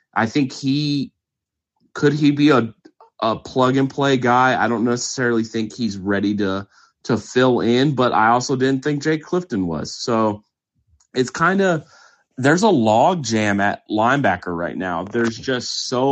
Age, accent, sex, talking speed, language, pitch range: 30-49, American, male, 170 wpm, English, 105-135 Hz